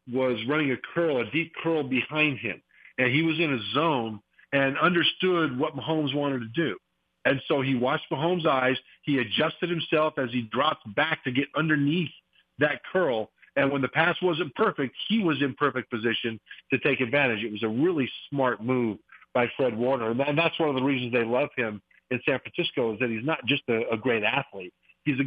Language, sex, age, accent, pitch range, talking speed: English, male, 50-69, American, 125-160 Hz, 205 wpm